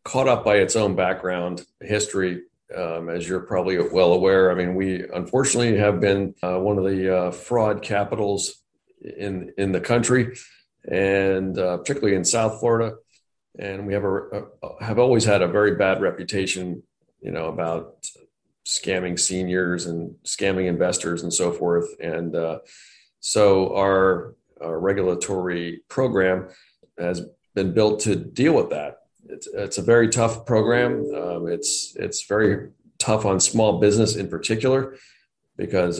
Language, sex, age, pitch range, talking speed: English, male, 40-59, 90-105 Hz, 150 wpm